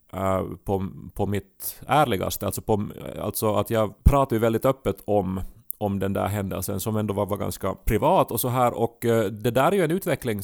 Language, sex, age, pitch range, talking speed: Swedish, male, 30-49, 100-120 Hz, 205 wpm